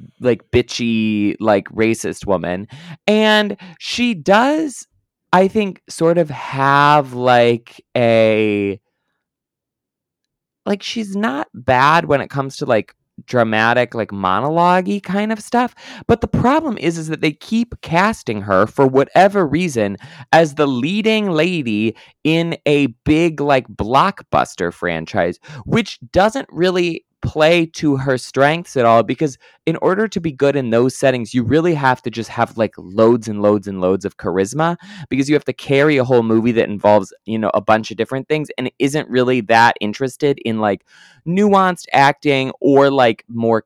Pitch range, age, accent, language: 115-165 Hz, 20-39, American, English